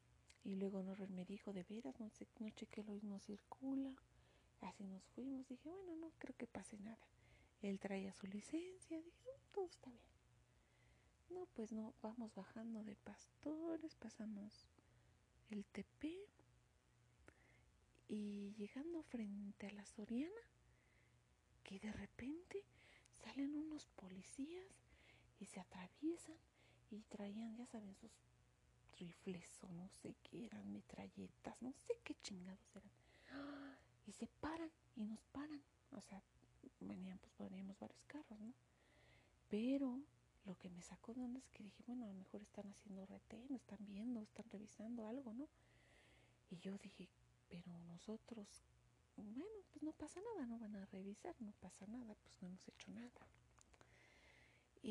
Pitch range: 195-270 Hz